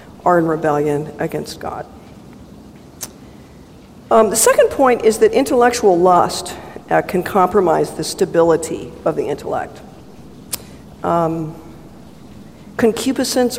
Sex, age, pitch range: female, 50-69, 160-210 Hz